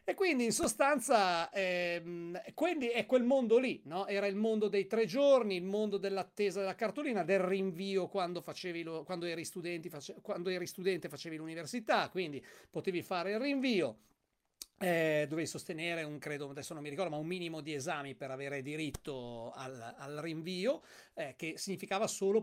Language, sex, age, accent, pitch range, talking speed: Italian, male, 40-59, native, 165-220 Hz, 170 wpm